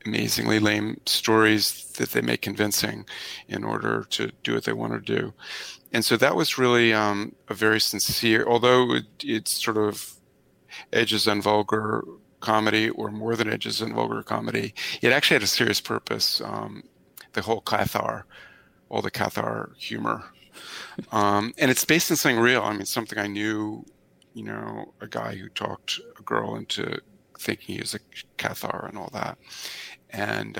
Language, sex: English, male